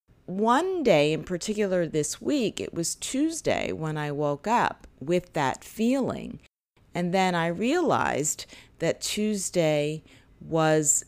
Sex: female